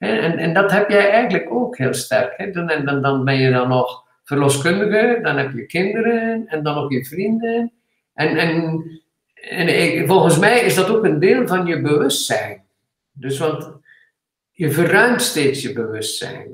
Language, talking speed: Dutch, 180 wpm